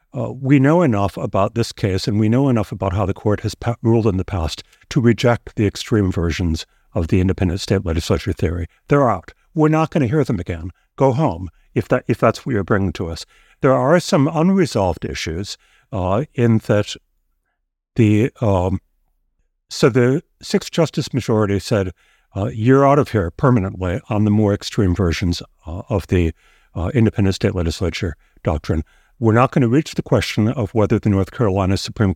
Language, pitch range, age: English, 95-125 Hz, 60-79